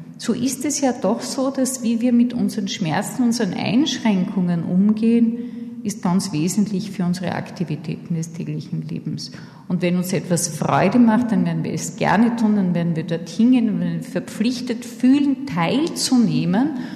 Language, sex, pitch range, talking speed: German, female, 175-225 Hz, 150 wpm